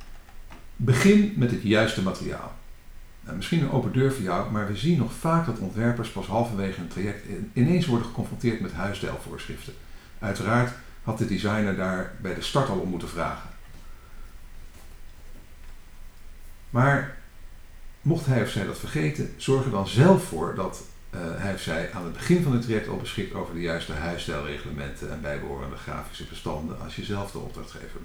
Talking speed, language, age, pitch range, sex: 165 wpm, Dutch, 50-69, 80-130 Hz, male